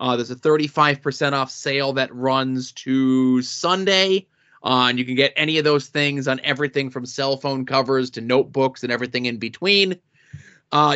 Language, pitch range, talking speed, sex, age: English, 130-160 Hz, 175 wpm, male, 30-49